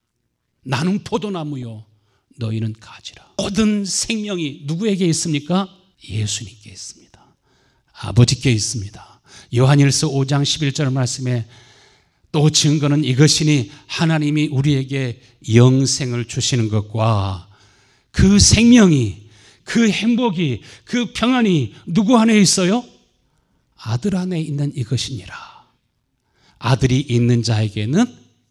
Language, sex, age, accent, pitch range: Korean, male, 40-59, native, 120-160 Hz